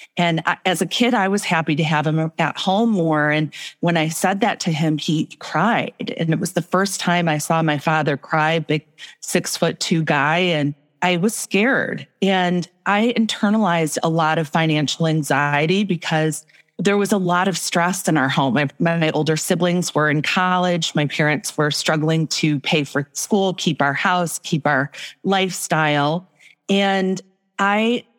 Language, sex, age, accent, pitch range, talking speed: English, female, 40-59, American, 155-195 Hz, 175 wpm